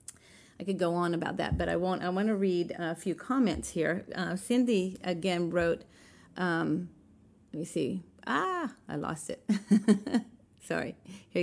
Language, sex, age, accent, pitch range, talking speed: English, female, 40-59, American, 170-210 Hz, 165 wpm